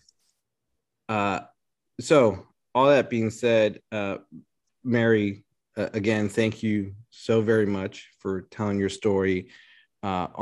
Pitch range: 95-110 Hz